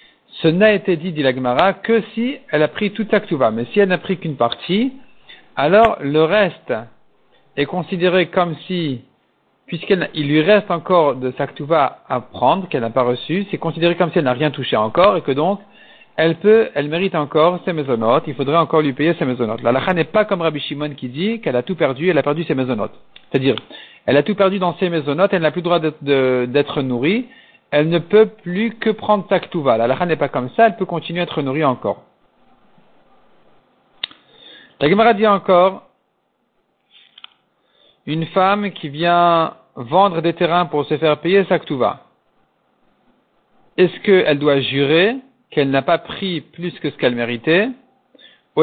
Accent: French